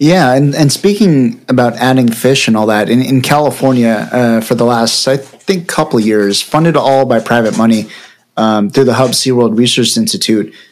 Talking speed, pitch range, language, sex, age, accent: 195 wpm, 115-135 Hz, English, male, 30-49, American